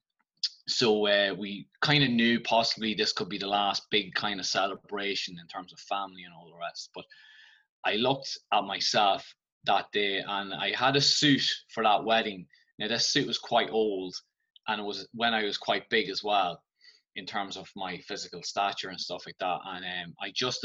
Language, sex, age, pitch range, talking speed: English, male, 20-39, 100-140 Hz, 200 wpm